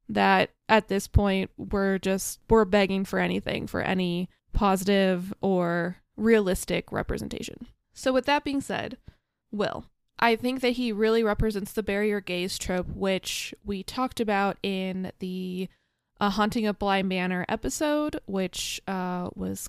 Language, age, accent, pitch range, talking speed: English, 20-39, American, 185-215 Hz, 145 wpm